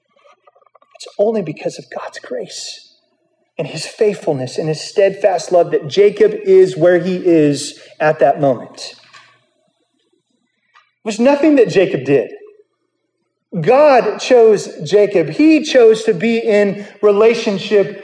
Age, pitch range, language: 30-49, 155-245 Hz, English